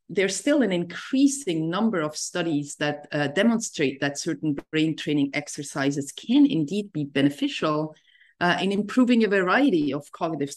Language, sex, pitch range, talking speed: English, female, 145-185 Hz, 150 wpm